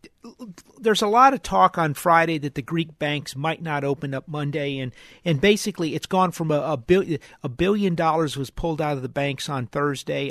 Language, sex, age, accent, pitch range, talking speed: English, male, 50-69, American, 140-170 Hz, 210 wpm